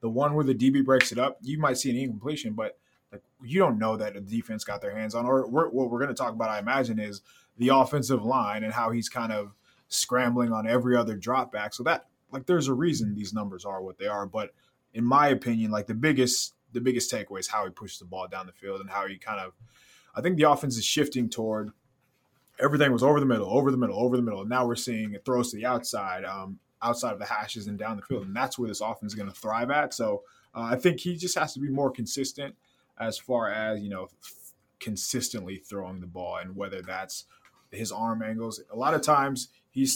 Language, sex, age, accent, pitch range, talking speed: English, male, 20-39, American, 110-135 Hz, 245 wpm